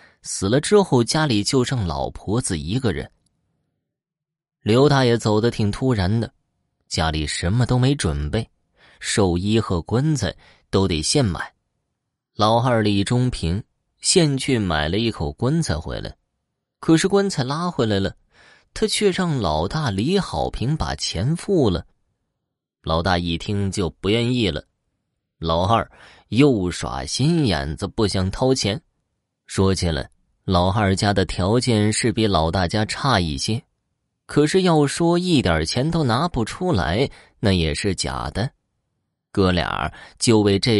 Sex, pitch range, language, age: male, 90-130 Hz, Chinese, 20-39